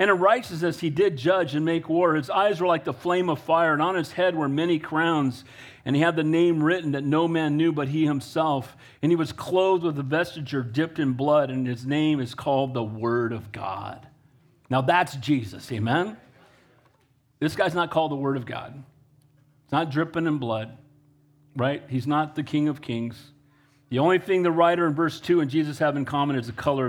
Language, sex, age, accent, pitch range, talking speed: English, male, 40-59, American, 130-165 Hz, 215 wpm